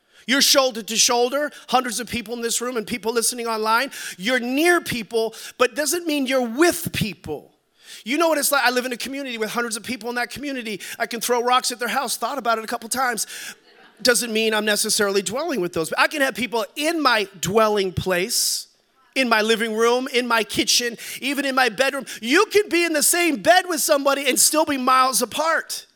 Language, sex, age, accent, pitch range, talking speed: English, male, 30-49, American, 225-280 Hz, 215 wpm